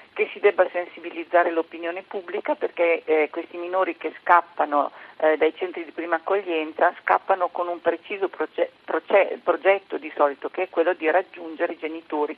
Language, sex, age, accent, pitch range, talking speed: Italian, female, 50-69, native, 150-185 Hz, 165 wpm